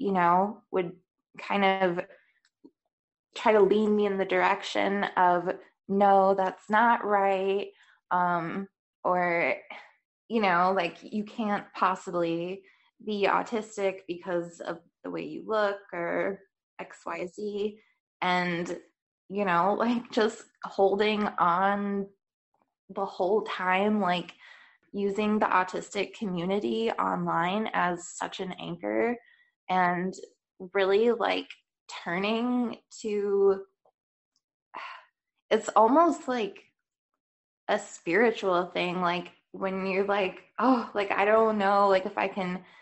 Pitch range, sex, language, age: 185-215 Hz, female, English, 20-39